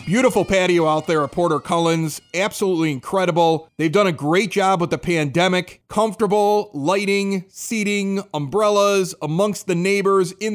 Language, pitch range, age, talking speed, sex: English, 155-205 Hz, 30-49, 140 wpm, male